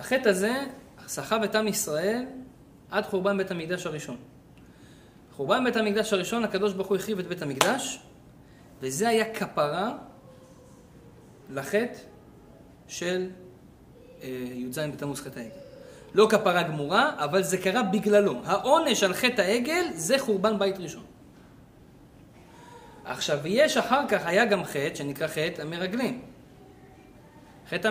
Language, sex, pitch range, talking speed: Hebrew, male, 150-215 Hz, 125 wpm